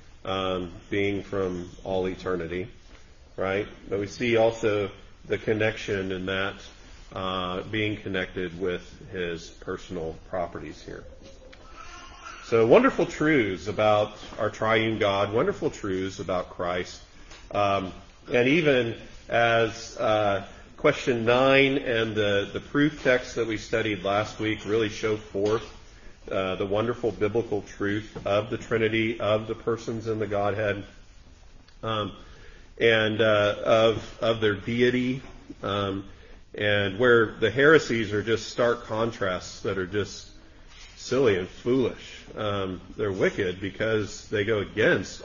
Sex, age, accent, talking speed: male, 40-59, American, 125 wpm